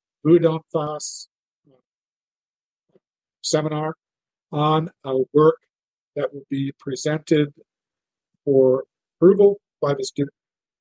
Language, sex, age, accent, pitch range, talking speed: English, male, 50-69, American, 140-165 Hz, 80 wpm